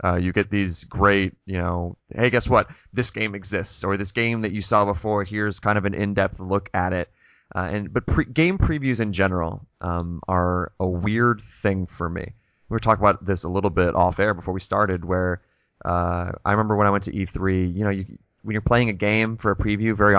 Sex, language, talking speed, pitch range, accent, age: male, English, 230 wpm, 95-110 Hz, American, 20-39